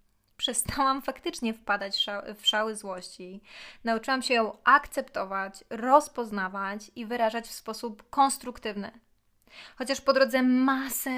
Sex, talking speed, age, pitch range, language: female, 115 wpm, 20-39, 220-270 Hz, Polish